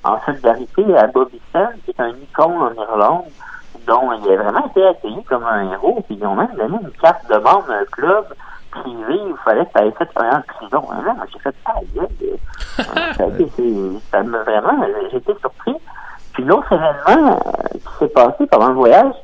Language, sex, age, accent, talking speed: French, male, 50-69, French, 185 wpm